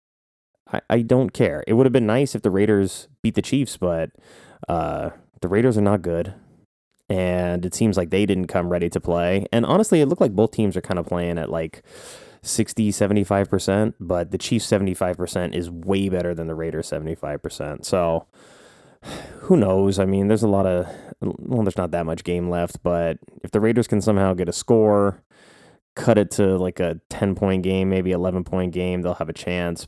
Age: 20-39